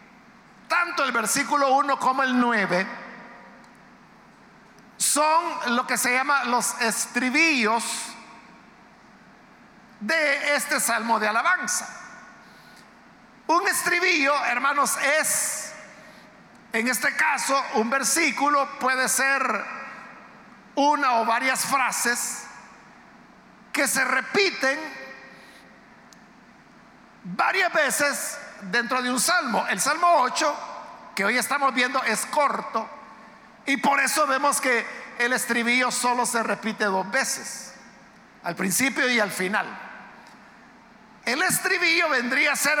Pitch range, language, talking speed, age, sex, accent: 230-285 Hz, Spanish, 105 wpm, 50-69, male, Mexican